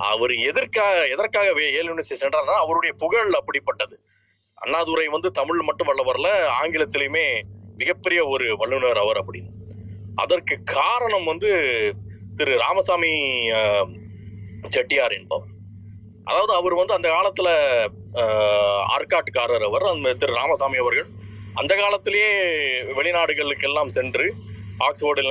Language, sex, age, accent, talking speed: Tamil, male, 30-49, native, 95 wpm